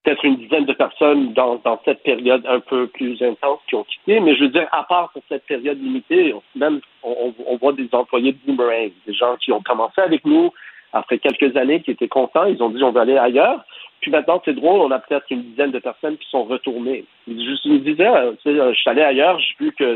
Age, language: 50-69, French